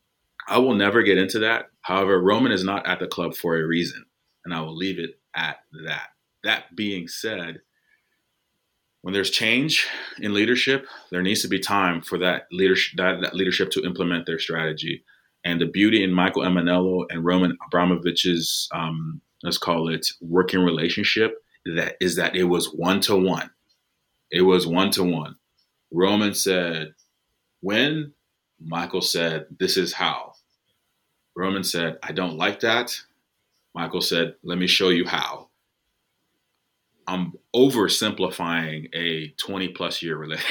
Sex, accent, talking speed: male, American, 135 wpm